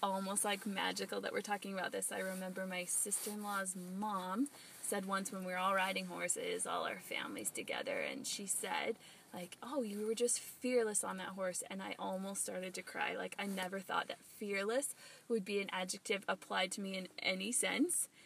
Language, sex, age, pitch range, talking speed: English, female, 20-39, 195-235 Hz, 195 wpm